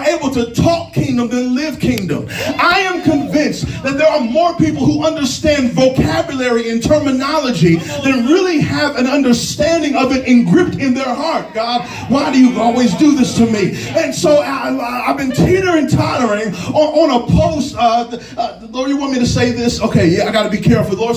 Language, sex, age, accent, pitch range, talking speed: English, male, 30-49, American, 240-300 Hz, 195 wpm